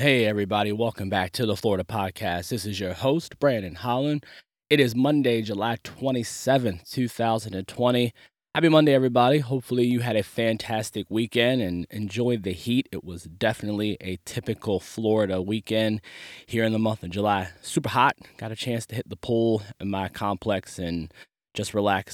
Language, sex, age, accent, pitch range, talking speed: English, male, 20-39, American, 95-115 Hz, 165 wpm